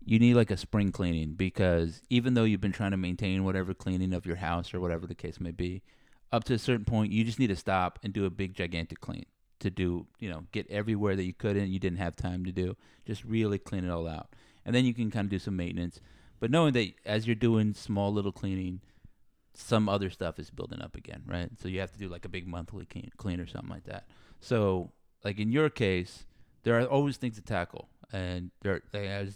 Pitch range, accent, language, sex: 90-110 Hz, American, English, male